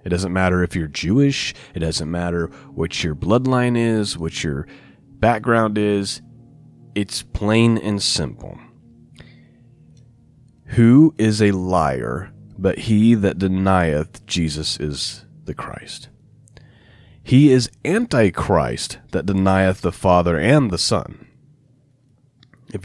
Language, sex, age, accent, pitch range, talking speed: English, male, 30-49, American, 95-130 Hz, 115 wpm